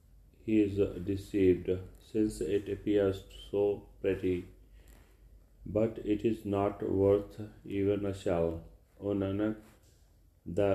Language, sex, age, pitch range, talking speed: Punjabi, male, 40-59, 90-100 Hz, 100 wpm